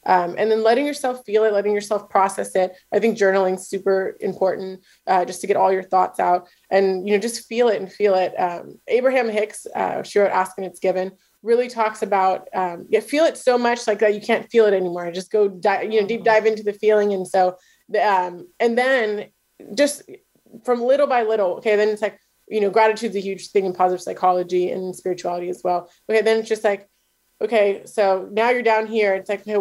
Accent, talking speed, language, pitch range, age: American, 230 wpm, English, 185-220 Hz, 20-39